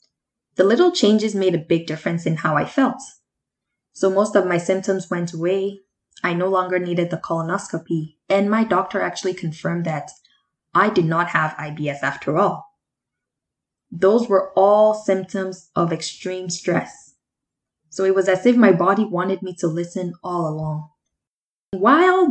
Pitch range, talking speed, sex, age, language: 170-200 Hz, 155 wpm, female, 10-29, English